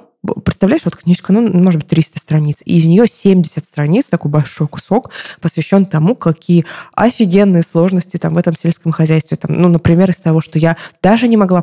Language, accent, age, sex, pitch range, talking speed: Russian, native, 20-39, female, 160-185 Hz, 185 wpm